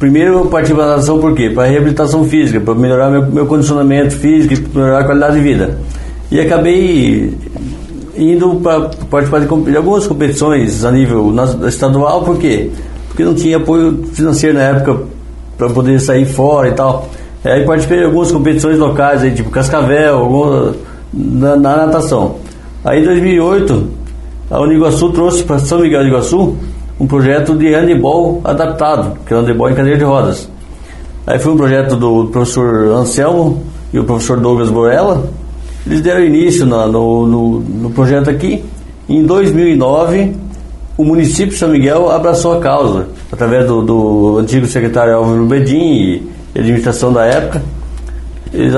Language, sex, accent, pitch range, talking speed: Portuguese, male, Brazilian, 115-155 Hz, 160 wpm